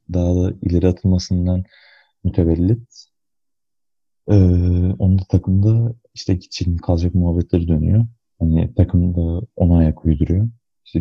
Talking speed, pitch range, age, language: 110 wpm, 85-110 Hz, 30-49, Turkish